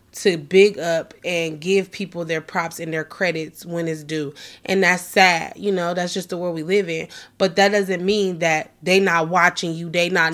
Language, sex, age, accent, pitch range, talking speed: English, female, 20-39, American, 165-195 Hz, 215 wpm